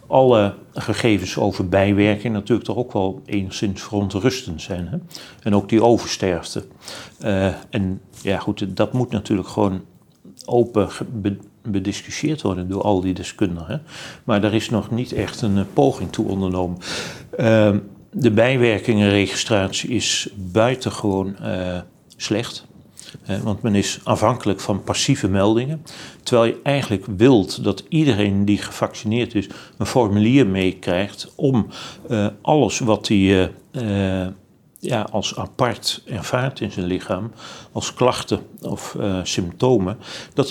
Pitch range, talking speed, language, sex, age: 95-115 Hz, 130 wpm, Dutch, male, 40-59